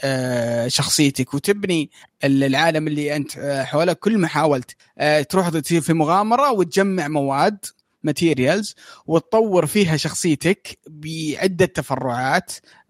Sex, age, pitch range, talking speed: male, 20-39, 150-195 Hz, 100 wpm